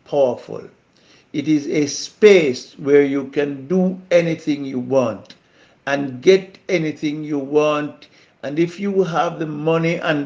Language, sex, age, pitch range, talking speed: English, male, 60-79, 130-165 Hz, 140 wpm